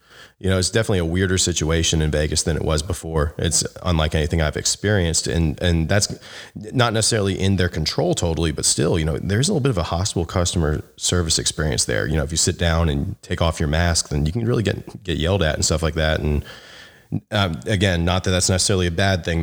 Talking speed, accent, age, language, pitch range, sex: 230 wpm, American, 30-49, English, 80-95 Hz, male